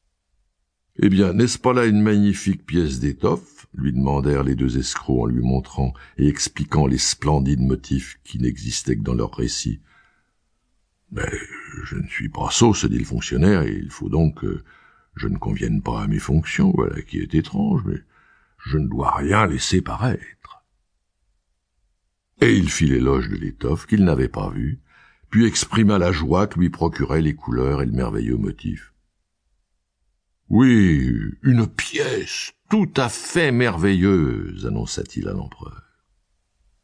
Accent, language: French, French